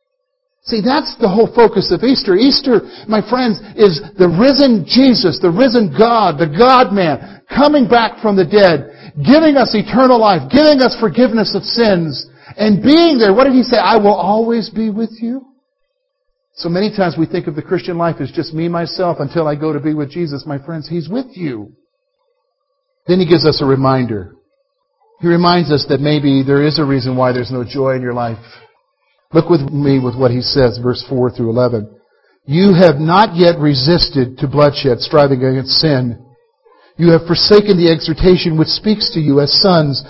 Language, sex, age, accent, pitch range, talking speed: English, male, 50-69, American, 150-230 Hz, 185 wpm